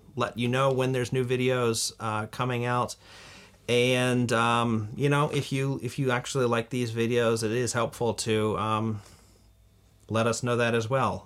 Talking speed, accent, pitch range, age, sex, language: 175 wpm, American, 105-130 Hz, 30-49, male, English